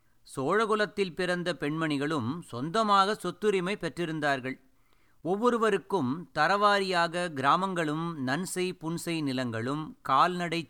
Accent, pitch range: native, 140-185 Hz